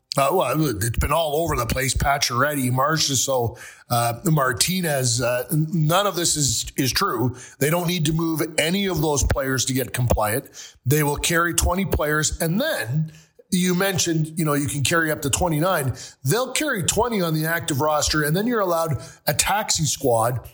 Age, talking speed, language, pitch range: 40-59, 180 wpm, English, 135-170 Hz